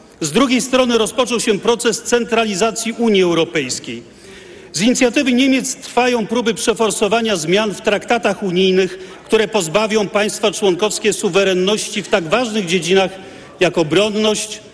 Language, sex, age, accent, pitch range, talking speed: Polish, male, 40-59, native, 190-235 Hz, 120 wpm